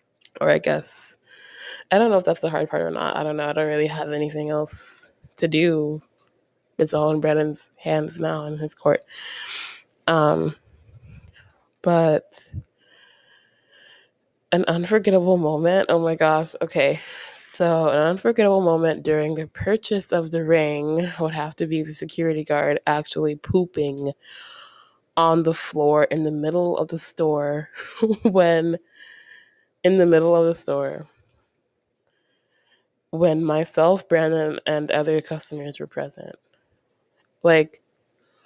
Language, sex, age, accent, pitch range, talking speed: English, female, 20-39, American, 150-175 Hz, 135 wpm